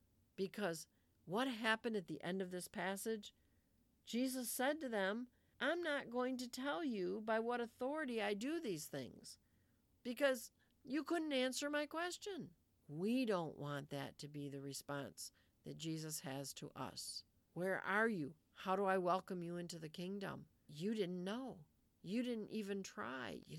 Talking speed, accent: 165 wpm, American